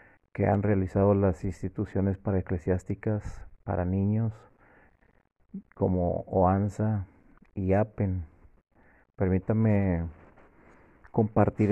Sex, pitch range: male, 95-105 Hz